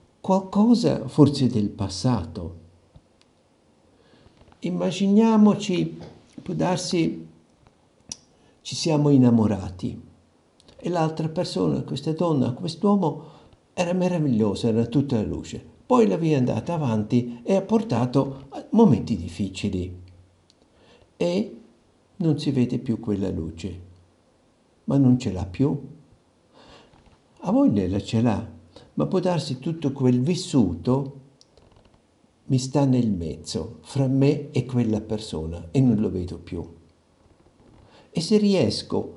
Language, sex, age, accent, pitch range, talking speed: Italian, male, 60-79, native, 100-145 Hz, 115 wpm